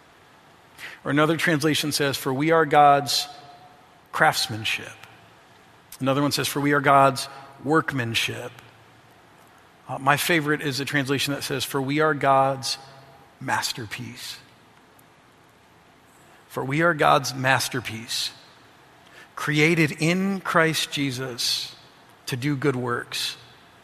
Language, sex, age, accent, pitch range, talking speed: English, male, 50-69, American, 125-155 Hz, 110 wpm